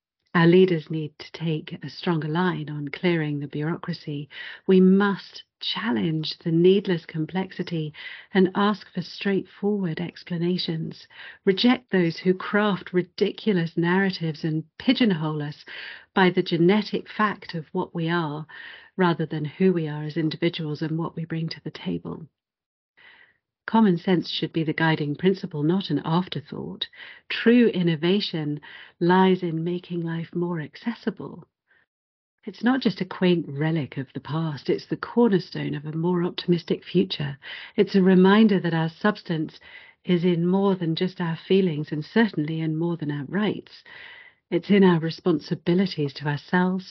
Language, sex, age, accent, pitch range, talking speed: English, female, 50-69, British, 155-190 Hz, 145 wpm